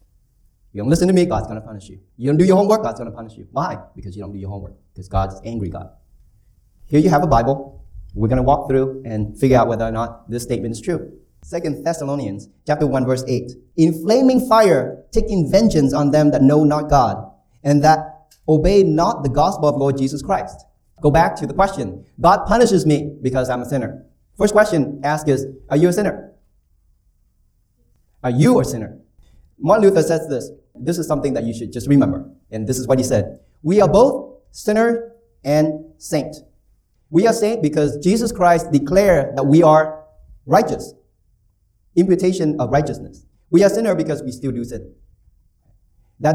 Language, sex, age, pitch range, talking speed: English, male, 30-49, 105-160 Hz, 195 wpm